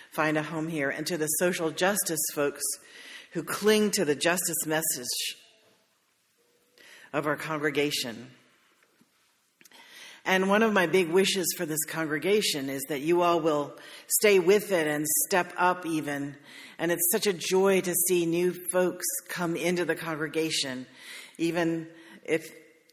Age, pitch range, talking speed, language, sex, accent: 50-69, 150-180 Hz, 145 wpm, English, female, American